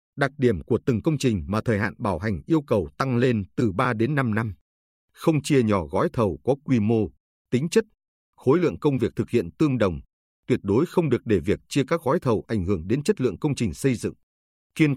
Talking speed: 235 wpm